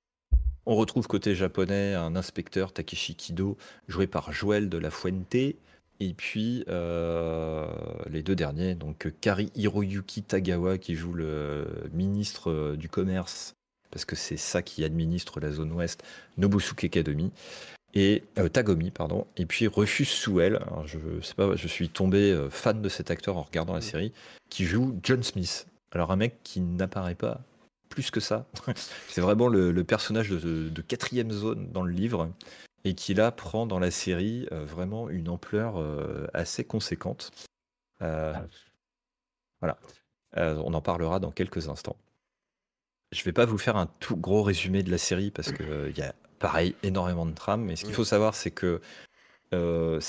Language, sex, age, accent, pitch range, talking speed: French, male, 30-49, French, 85-105 Hz, 175 wpm